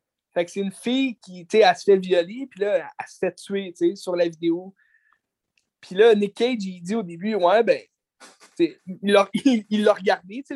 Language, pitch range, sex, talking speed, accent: French, 185-230 Hz, male, 225 wpm, Canadian